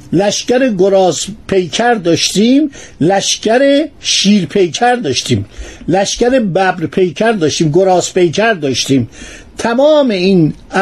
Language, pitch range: Persian, 175-225 Hz